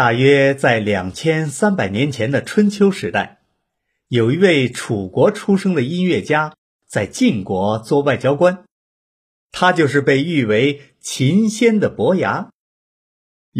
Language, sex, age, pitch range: Chinese, male, 50-69, 120-190 Hz